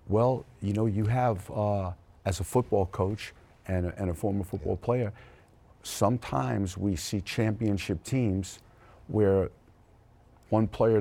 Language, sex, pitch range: English, male, 95-110 Hz